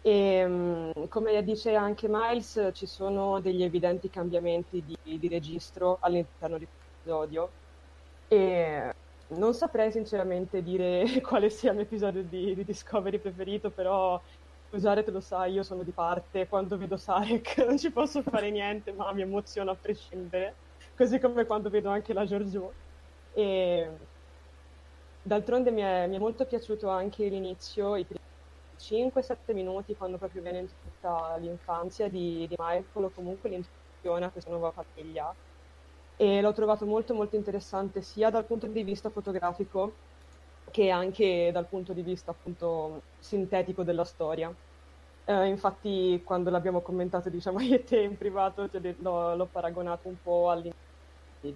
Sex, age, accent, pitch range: female, 20-39, native, 170-205 Hz